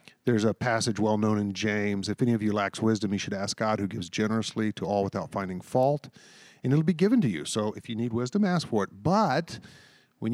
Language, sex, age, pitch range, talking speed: English, male, 40-59, 110-150 Hz, 240 wpm